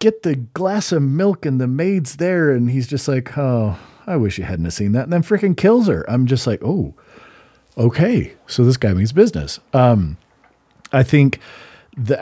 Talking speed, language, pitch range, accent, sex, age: 195 wpm, English, 110-135 Hz, American, male, 40-59